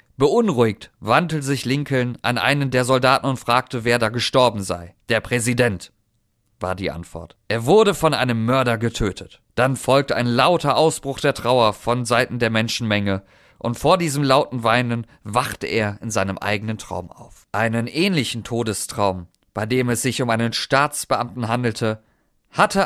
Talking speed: 160 wpm